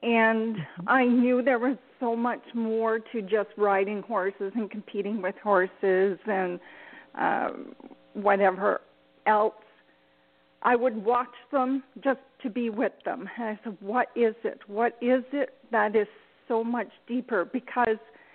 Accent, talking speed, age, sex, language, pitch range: American, 145 wpm, 40-59, female, English, 200-245 Hz